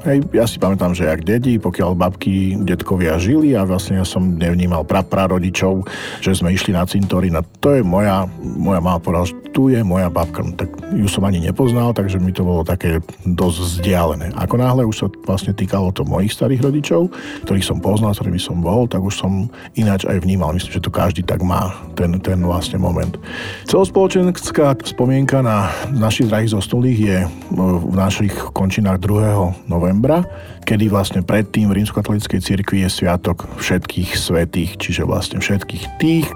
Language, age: Slovak, 50-69